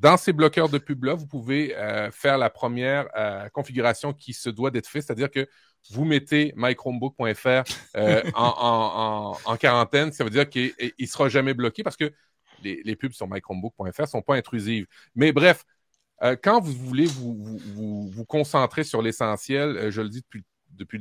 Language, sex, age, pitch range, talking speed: French, male, 30-49, 120-150 Hz, 190 wpm